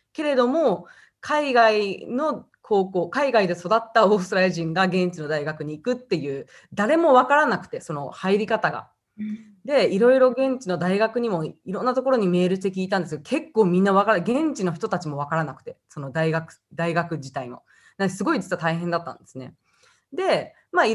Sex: female